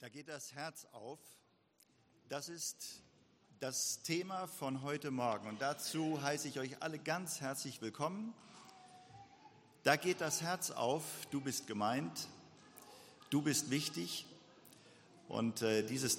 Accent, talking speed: German, 130 wpm